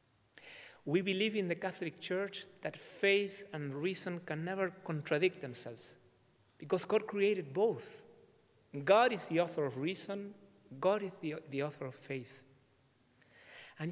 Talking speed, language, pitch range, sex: 140 wpm, English, 140-185 Hz, male